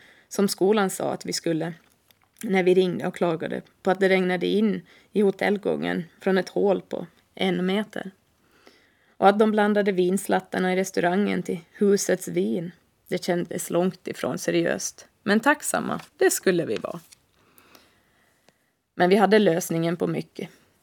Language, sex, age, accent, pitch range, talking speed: Swedish, female, 20-39, native, 175-210 Hz, 145 wpm